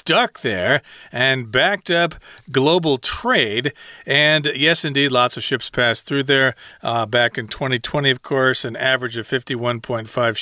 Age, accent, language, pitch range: 40-59, American, Chinese, 120-155 Hz